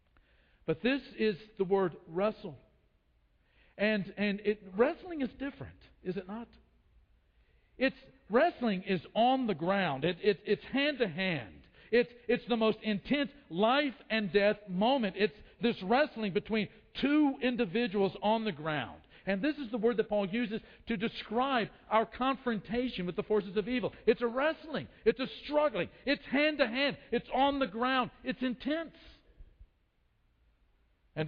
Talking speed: 150 wpm